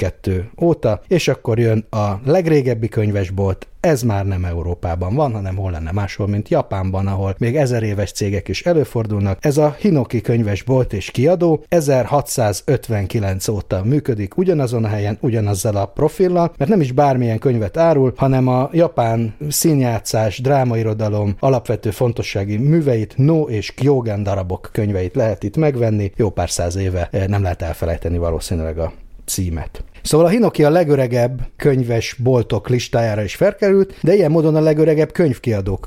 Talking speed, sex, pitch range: 145 wpm, male, 100-140 Hz